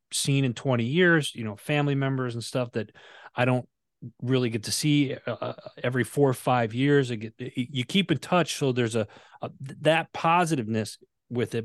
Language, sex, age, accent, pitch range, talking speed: English, male, 30-49, American, 110-135 Hz, 190 wpm